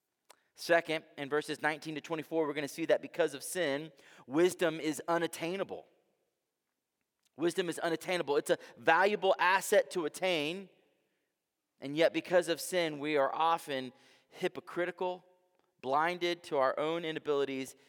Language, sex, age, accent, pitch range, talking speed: English, male, 30-49, American, 145-185 Hz, 135 wpm